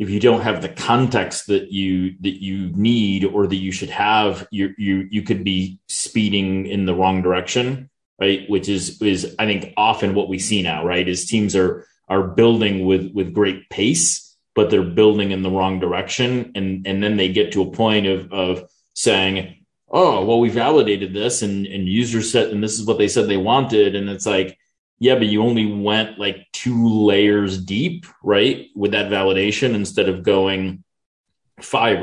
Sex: male